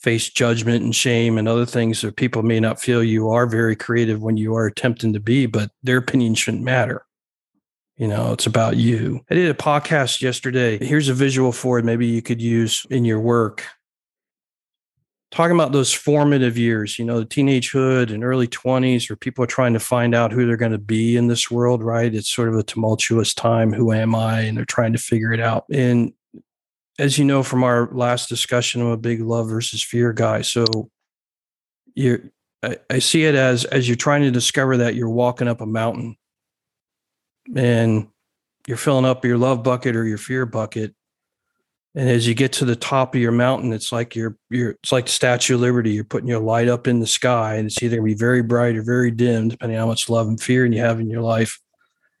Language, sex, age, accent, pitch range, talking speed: English, male, 40-59, American, 115-125 Hz, 215 wpm